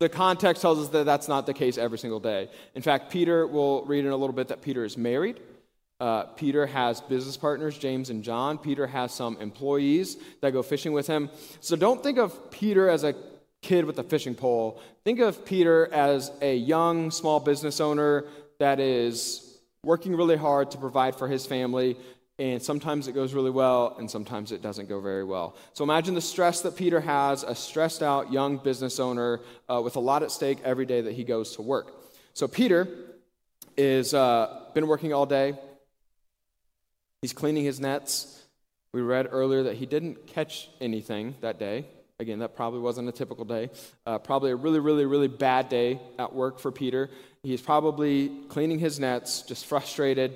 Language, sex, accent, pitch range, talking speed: English, male, American, 125-150 Hz, 190 wpm